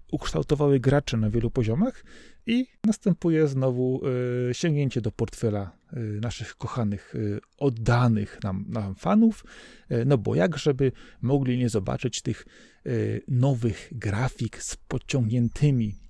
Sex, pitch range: male, 120-155 Hz